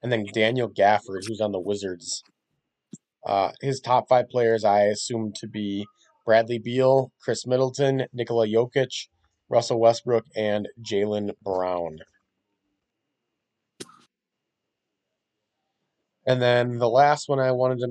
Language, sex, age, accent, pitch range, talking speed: English, male, 20-39, American, 105-130 Hz, 120 wpm